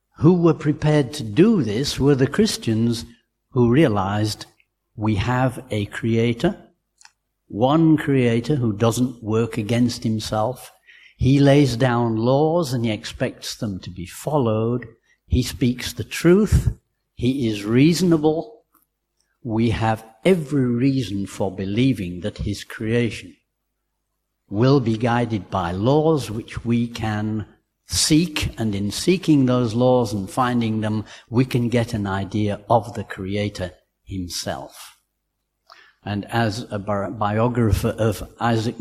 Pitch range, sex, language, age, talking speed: 105-130 Hz, male, English, 60-79, 125 wpm